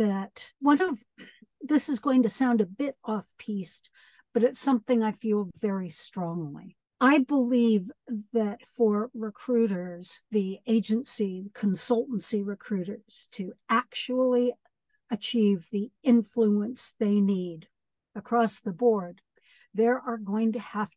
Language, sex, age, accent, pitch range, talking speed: English, female, 60-79, American, 195-245 Hz, 120 wpm